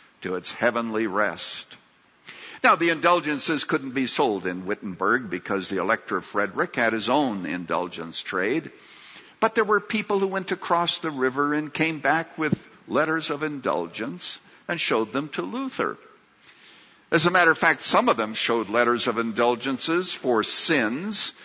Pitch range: 115-165 Hz